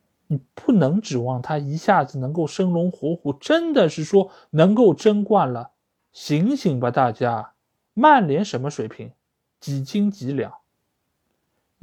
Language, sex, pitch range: Chinese, male, 130-200 Hz